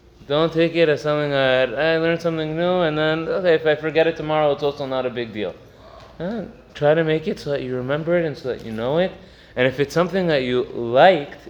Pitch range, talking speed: 135-180 Hz, 245 wpm